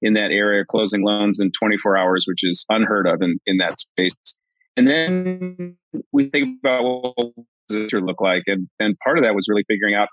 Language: English